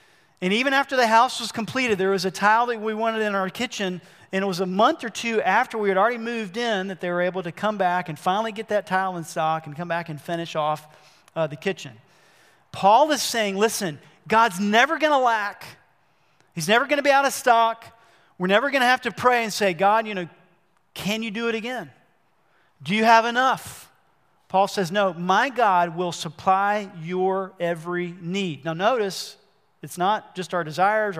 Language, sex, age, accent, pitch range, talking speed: English, male, 40-59, American, 175-220 Hz, 200 wpm